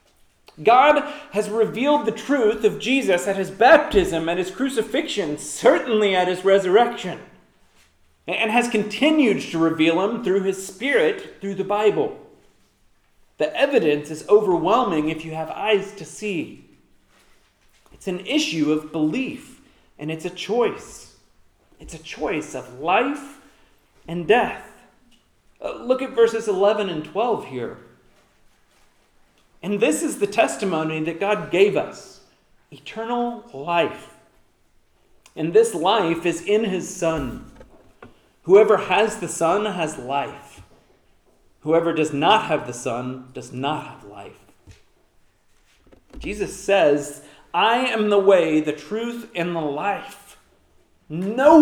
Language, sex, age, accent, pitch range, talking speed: English, male, 40-59, American, 160-235 Hz, 125 wpm